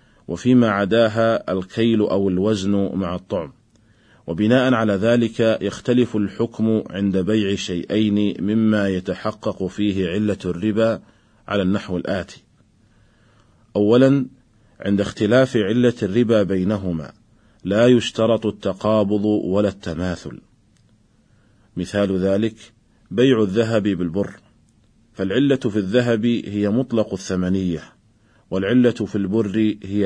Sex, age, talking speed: male, 40-59, 100 wpm